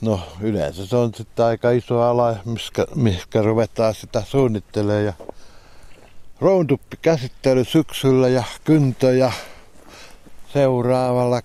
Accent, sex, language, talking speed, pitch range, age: native, male, Finnish, 90 wpm, 100-120 Hz, 60-79